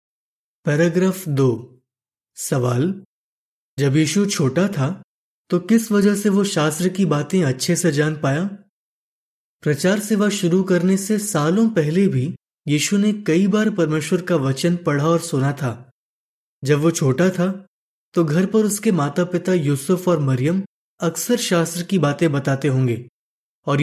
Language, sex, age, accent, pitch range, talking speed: Hindi, male, 20-39, native, 145-190 Hz, 145 wpm